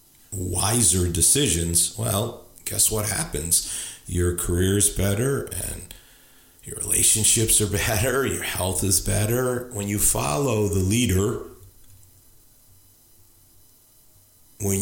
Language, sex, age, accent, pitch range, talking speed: English, male, 50-69, American, 95-110 Hz, 100 wpm